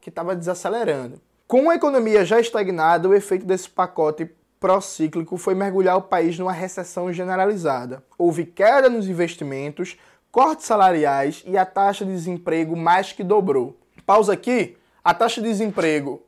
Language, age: Portuguese, 20-39